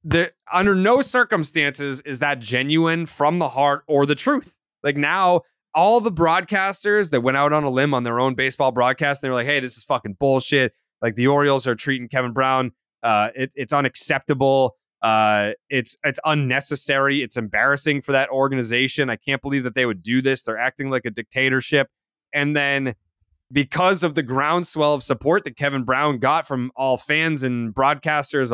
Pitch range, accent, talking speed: 130-165 Hz, American, 185 wpm